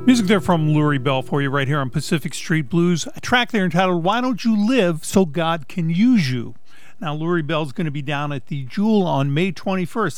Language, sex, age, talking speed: English, male, 50-69, 230 wpm